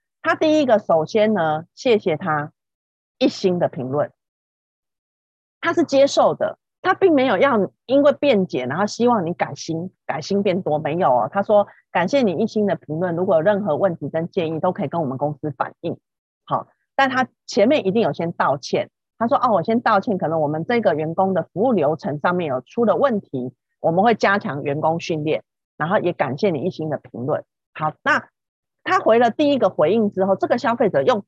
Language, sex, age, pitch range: Chinese, female, 30-49, 160-235 Hz